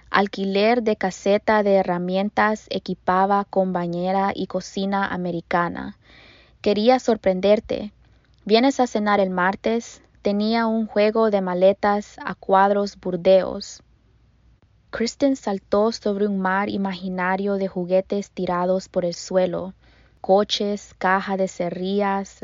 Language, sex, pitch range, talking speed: Spanish, female, 185-210 Hz, 110 wpm